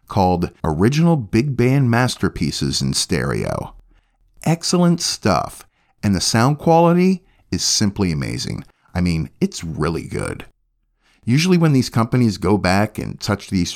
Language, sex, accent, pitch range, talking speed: English, male, American, 95-145 Hz, 130 wpm